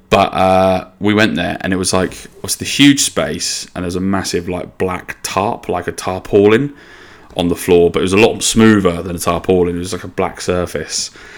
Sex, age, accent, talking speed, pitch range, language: male, 20-39, British, 220 wpm, 90-105 Hz, English